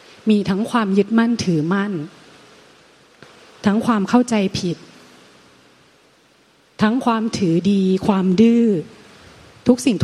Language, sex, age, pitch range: Thai, female, 30-49, 180-225 Hz